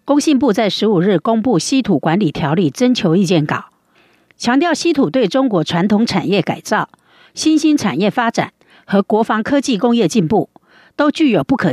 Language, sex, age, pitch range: Chinese, female, 50-69, 195-270 Hz